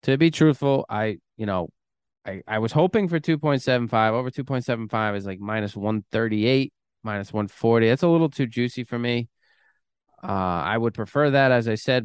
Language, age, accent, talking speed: English, 20-39, American, 175 wpm